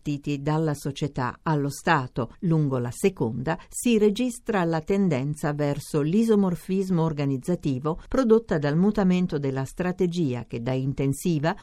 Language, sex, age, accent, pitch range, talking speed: Italian, female, 50-69, native, 140-195 Hz, 115 wpm